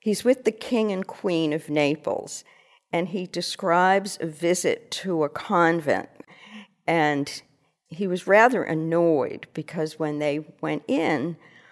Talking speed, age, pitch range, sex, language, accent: 135 wpm, 50-69, 150-185 Hz, female, English, American